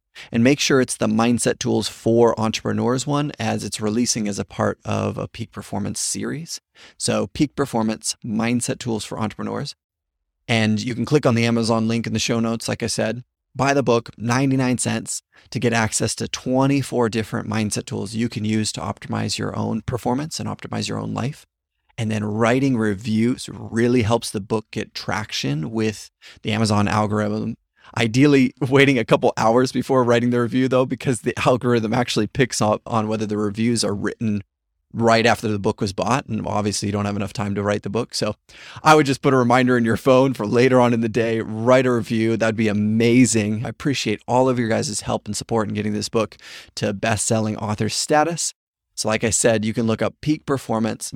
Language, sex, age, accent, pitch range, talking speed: English, male, 30-49, American, 105-125 Hz, 200 wpm